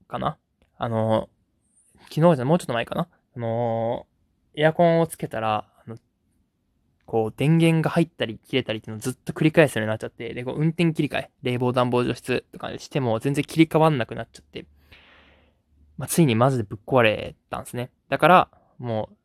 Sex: male